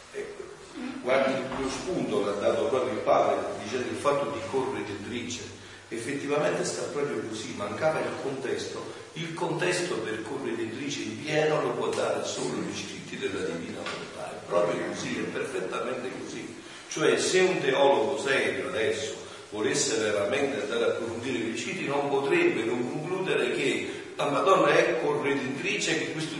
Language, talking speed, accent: Italian, 150 wpm, native